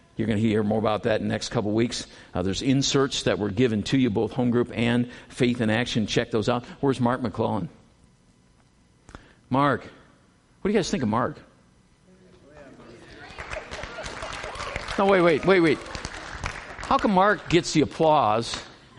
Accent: American